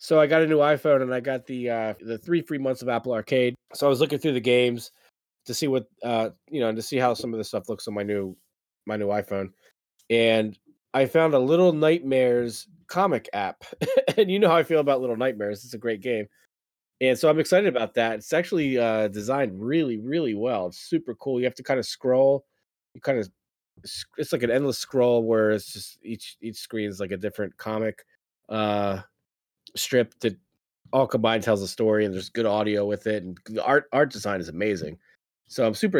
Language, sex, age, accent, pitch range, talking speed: English, male, 20-39, American, 105-135 Hz, 220 wpm